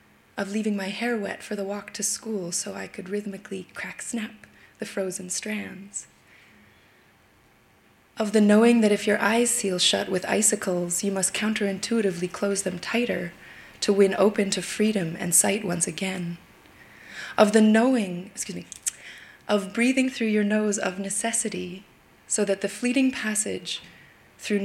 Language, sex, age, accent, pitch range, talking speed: English, female, 20-39, Canadian, 190-220 Hz, 155 wpm